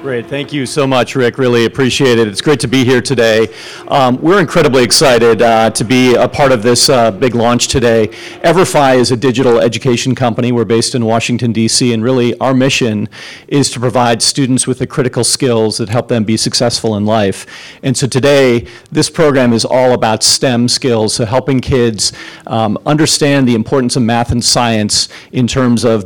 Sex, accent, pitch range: male, American, 115-130 Hz